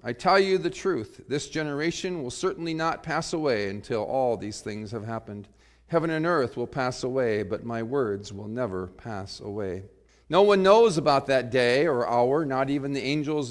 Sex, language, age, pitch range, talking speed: male, English, 40-59, 120-175 Hz, 190 wpm